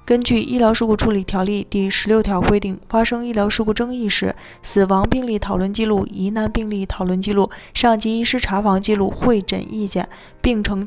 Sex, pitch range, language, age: female, 195-230 Hz, Chinese, 20-39